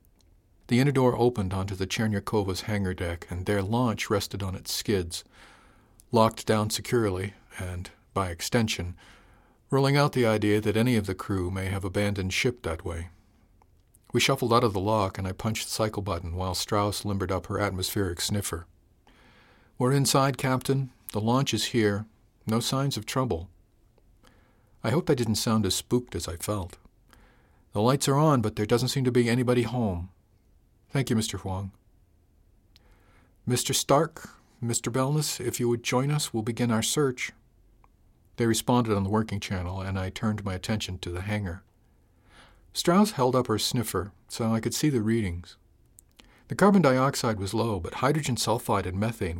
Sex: male